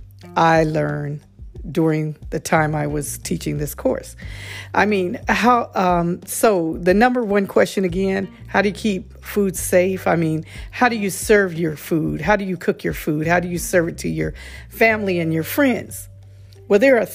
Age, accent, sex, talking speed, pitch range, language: 50-69, American, female, 190 wpm, 150-195 Hz, English